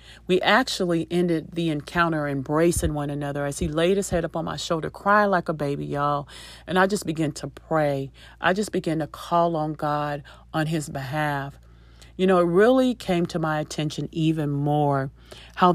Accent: American